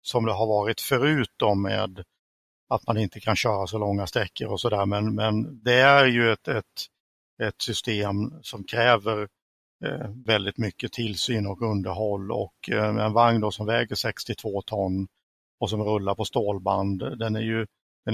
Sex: male